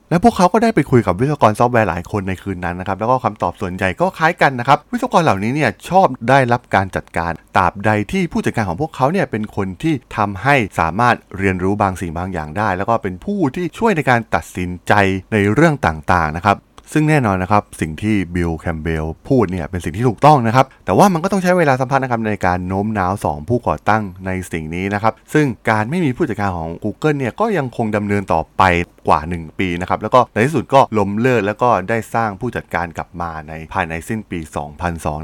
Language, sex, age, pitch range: Thai, male, 20-39, 90-120 Hz